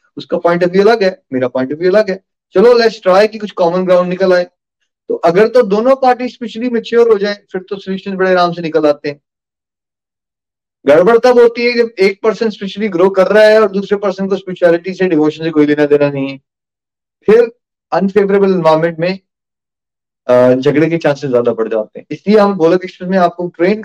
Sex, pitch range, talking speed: male, 150-205 Hz, 200 wpm